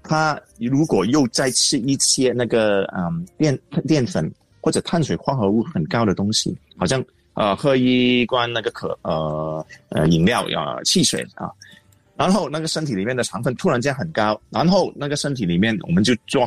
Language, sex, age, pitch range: Chinese, male, 30-49, 115-165 Hz